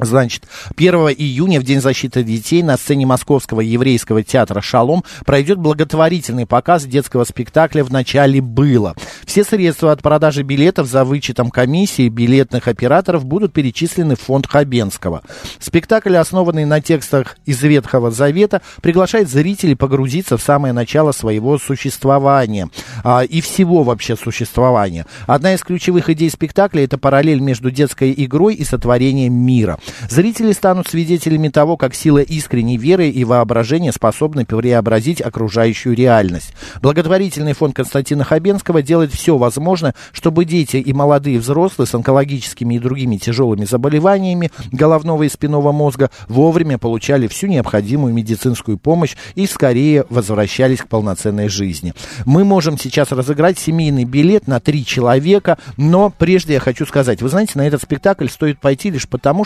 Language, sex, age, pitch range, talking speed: Russian, male, 50-69, 125-160 Hz, 140 wpm